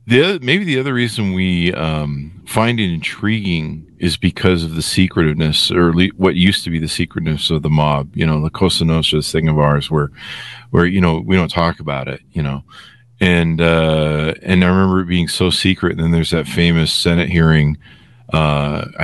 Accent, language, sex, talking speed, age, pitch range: American, English, male, 195 wpm, 40-59, 75-95 Hz